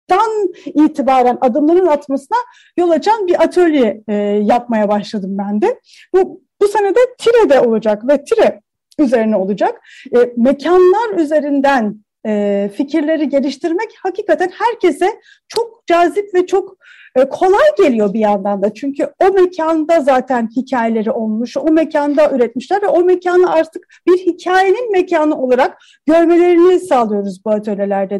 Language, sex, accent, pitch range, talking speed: Turkish, female, native, 255-370 Hz, 130 wpm